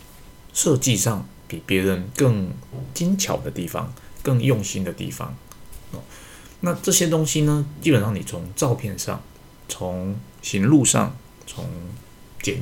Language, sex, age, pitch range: Chinese, male, 20-39, 95-125 Hz